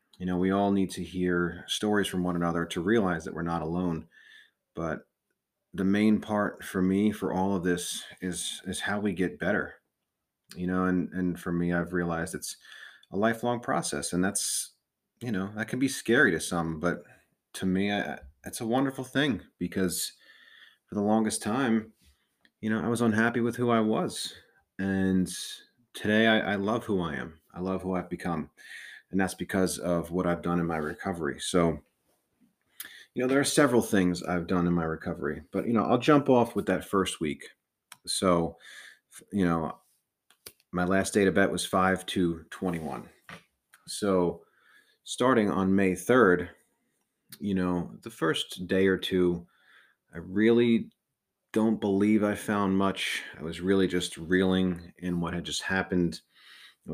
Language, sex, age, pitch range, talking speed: English, male, 30-49, 90-105 Hz, 170 wpm